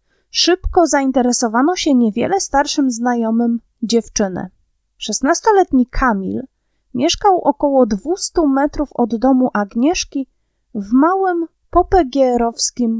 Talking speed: 90 wpm